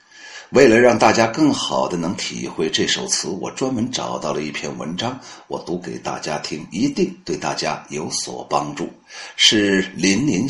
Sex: male